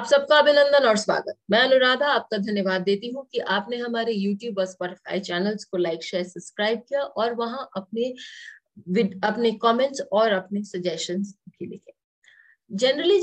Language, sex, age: English, female, 30-49